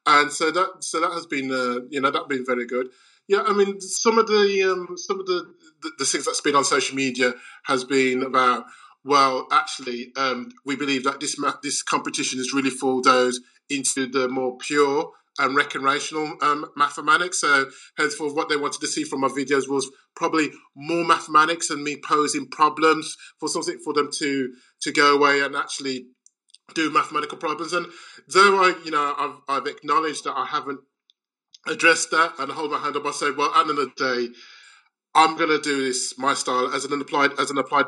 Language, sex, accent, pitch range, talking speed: English, male, British, 130-165 Hz, 195 wpm